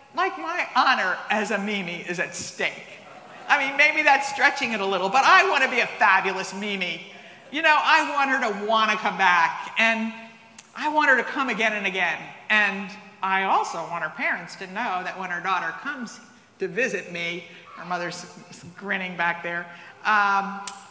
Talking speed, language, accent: 185 wpm, English, American